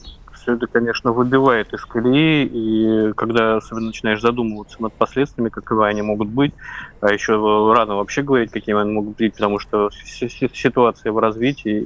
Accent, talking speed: native, 145 wpm